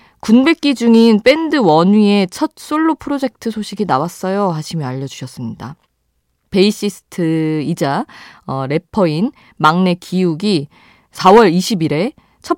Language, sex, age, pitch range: Korean, female, 20-39, 150-230 Hz